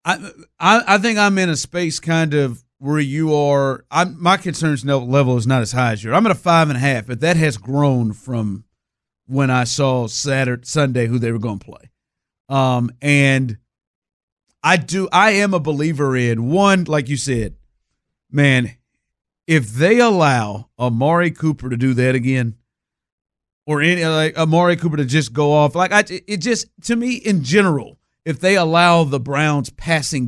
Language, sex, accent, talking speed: English, male, American, 180 wpm